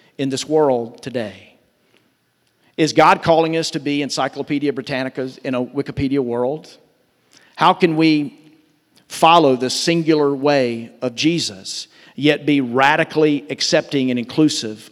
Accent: American